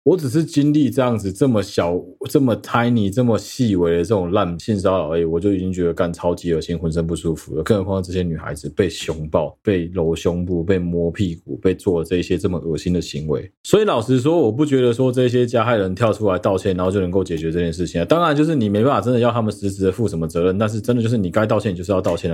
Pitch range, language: 95-120 Hz, Chinese